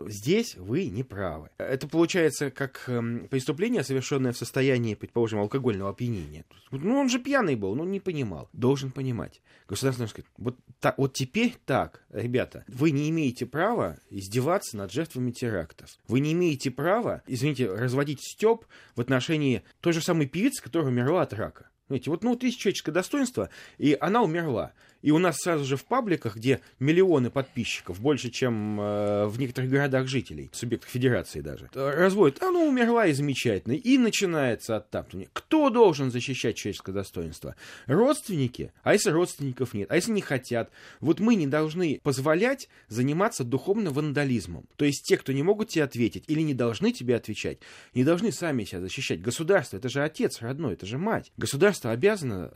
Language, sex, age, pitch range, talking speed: Russian, male, 20-39, 115-170 Hz, 170 wpm